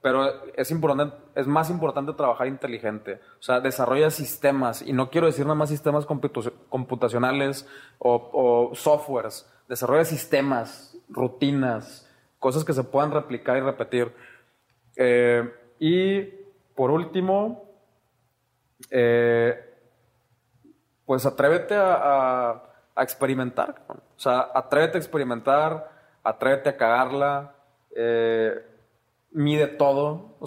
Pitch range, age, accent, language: 125-155 Hz, 30-49, Mexican, Spanish